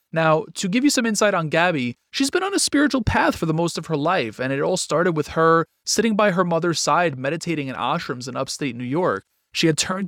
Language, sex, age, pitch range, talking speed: English, male, 30-49, 135-185 Hz, 245 wpm